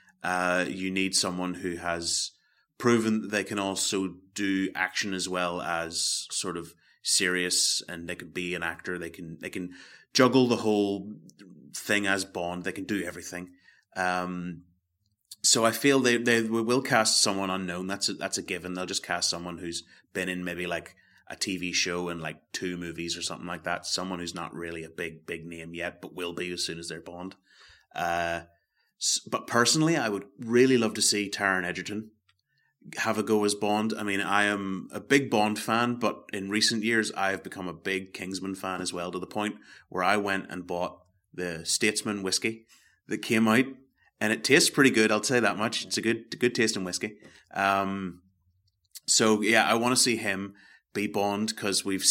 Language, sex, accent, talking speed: English, male, British, 195 wpm